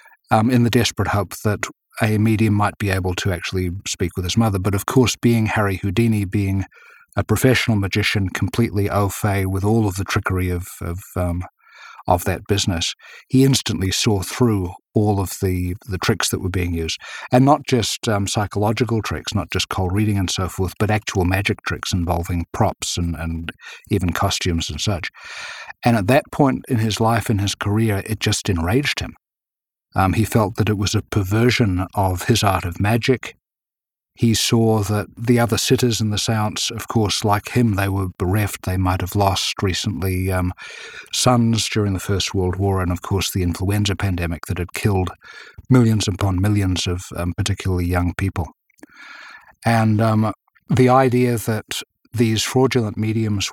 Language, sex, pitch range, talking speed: English, male, 95-110 Hz, 180 wpm